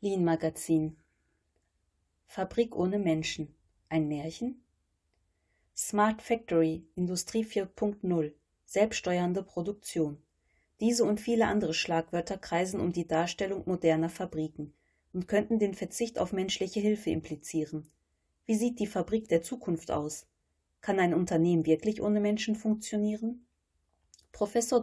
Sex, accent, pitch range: female, German, 160-210 Hz